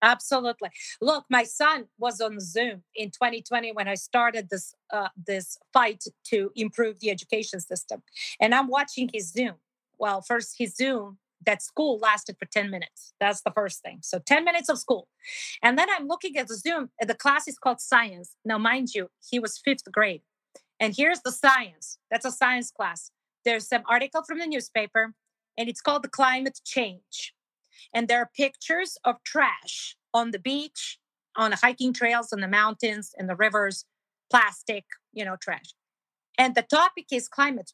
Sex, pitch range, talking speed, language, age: female, 215-275 Hz, 180 wpm, English, 30-49